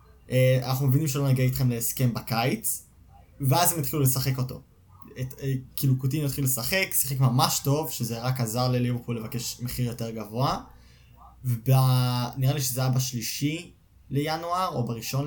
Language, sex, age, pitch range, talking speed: Hebrew, male, 20-39, 120-145 Hz, 150 wpm